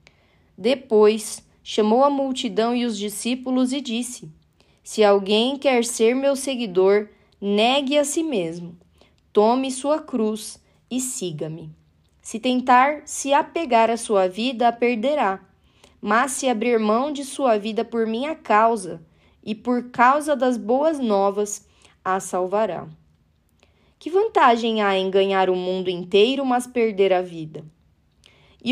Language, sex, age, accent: Portuguese, female, 20-39, Brazilian